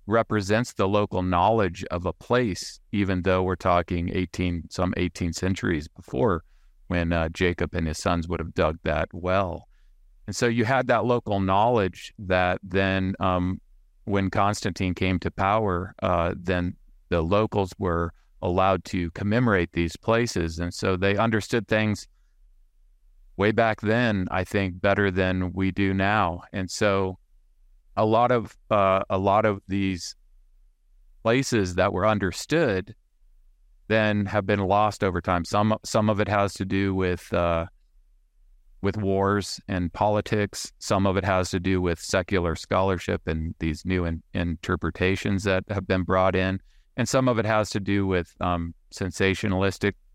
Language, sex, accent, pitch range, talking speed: English, male, American, 85-105 Hz, 155 wpm